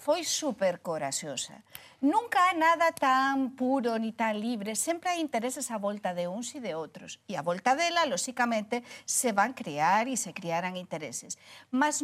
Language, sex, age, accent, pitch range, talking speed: Portuguese, female, 50-69, Spanish, 200-300 Hz, 170 wpm